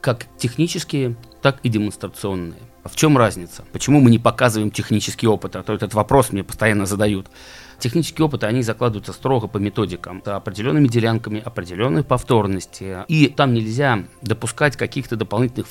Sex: male